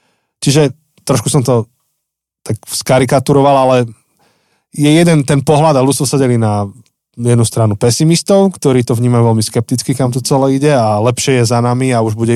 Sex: male